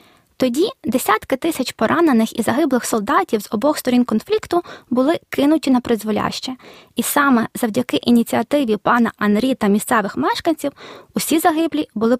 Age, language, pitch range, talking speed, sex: 20-39, Ukrainian, 225-320 Hz, 135 wpm, female